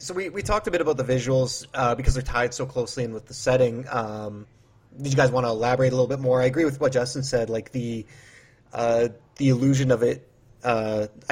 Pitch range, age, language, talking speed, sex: 110-130 Hz, 30-49, English, 235 wpm, male